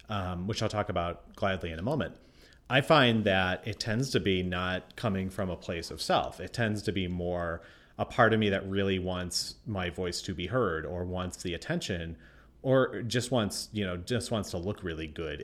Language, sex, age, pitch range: English, male, 30-49, 85-110 Hz